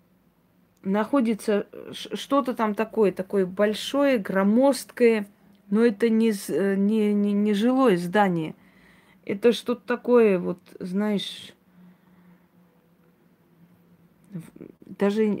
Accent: native